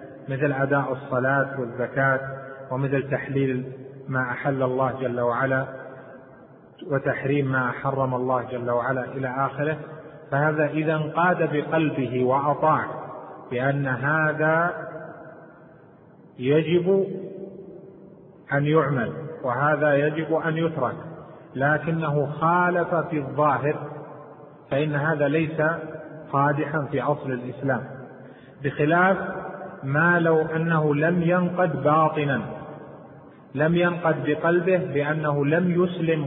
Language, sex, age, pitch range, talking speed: Arabic, male, 30-49, 135-165 Hz, 95 wpm